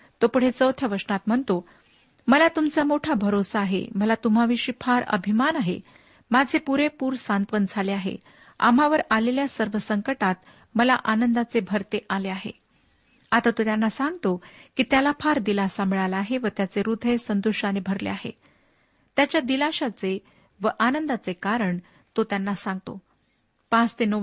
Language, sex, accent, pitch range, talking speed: Marathi, female, native, 210-265 Hz, 140 wpm